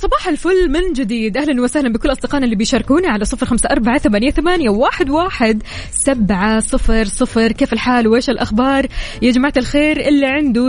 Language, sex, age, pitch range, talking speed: Arabic, female, 20-39, 210-270 Hz, 170 wpm